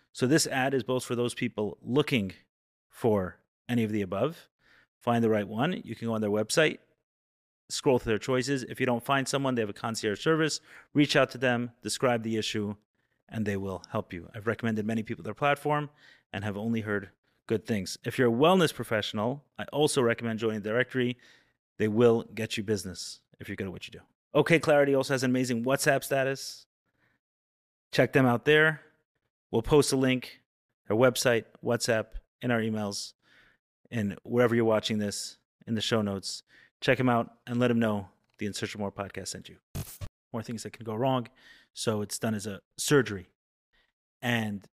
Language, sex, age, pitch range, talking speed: English, male, 30-49, 105-130 Hz, 190 wpm